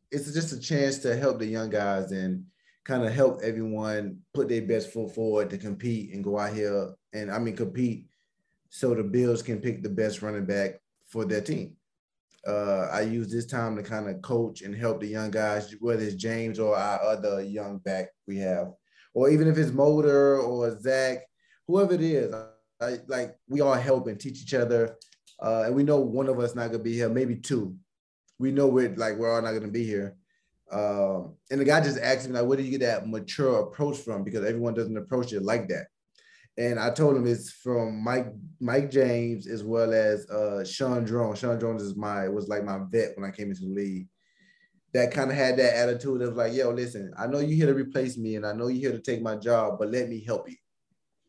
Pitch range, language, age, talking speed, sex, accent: 105-130 Hz, English, 20-39, 220 wpm, male, American